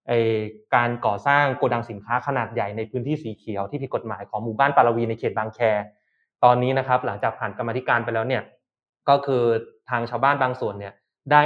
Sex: male